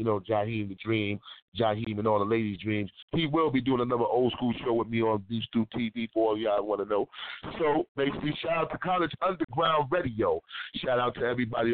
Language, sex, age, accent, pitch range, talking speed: English, male, 30-49, American, 115-130 Hz, 205 wpm